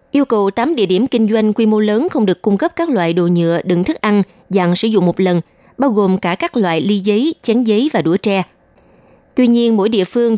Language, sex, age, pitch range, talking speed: Vietnamese, female, 20-39, 180-230 Hz, 250 wpm